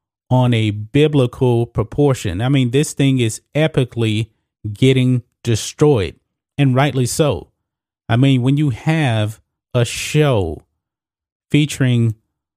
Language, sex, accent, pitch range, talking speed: English, male, American, 110-145 Hz, 110 wpm